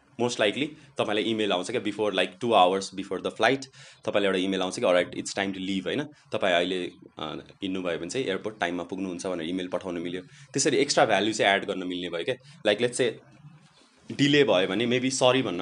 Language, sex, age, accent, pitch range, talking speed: English, male, 20-39, Indian, 105-135 Hz, 140 wpm